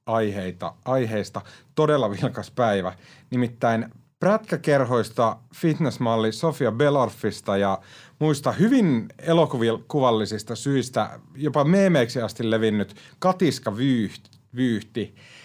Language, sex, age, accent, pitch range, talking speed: Finnish, male, 30-49, native, 100-130 Hz, 80 wpm